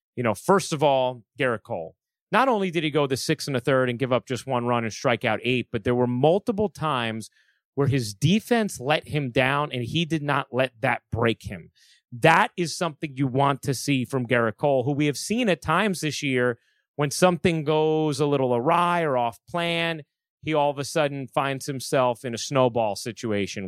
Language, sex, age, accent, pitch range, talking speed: English, male, 30-49, American, 120-155 Hz, 215 wpm